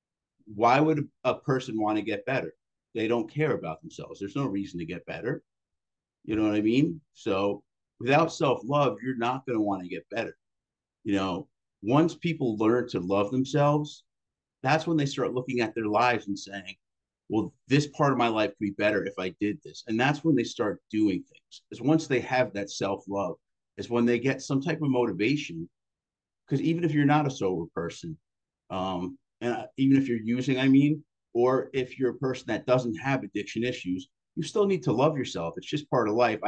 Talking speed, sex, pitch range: 205 wpm, male, 105-140 Hz